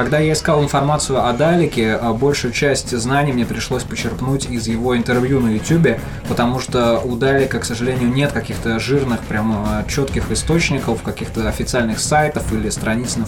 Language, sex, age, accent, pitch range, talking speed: Russian, male, 20-39, native, 120-140 Hz, 160 wpm